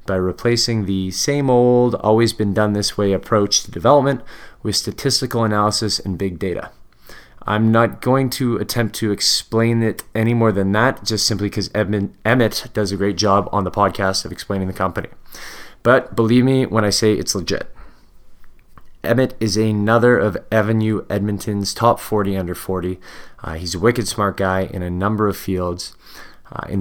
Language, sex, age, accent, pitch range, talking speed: English, male, 20-39, American, 100-120 Hz, 165 wpm